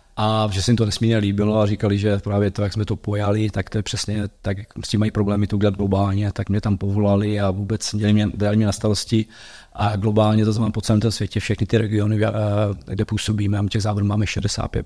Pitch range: 105-115 Hz